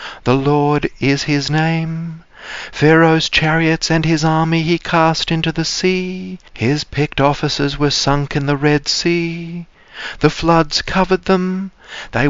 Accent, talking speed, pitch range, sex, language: Australian, 140 wpm, 145-170 Hz, male, English